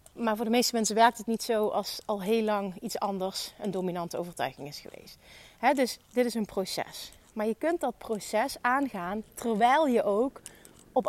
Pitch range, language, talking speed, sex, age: 205-265 Hz, Dutch, 190 wpm, female, 30-49